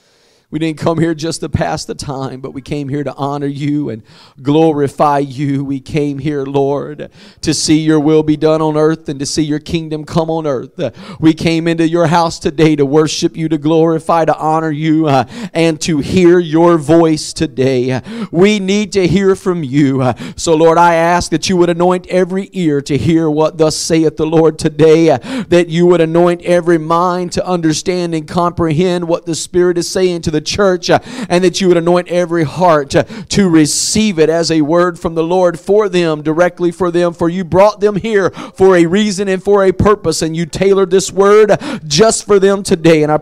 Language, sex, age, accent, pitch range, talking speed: English, male, 40-59, American, 160-205 Hz, 205 wpm